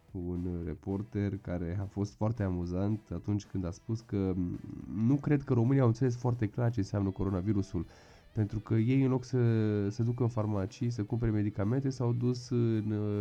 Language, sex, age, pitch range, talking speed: Romanian, male, 20-39, 95-110 Hz, 175 wpm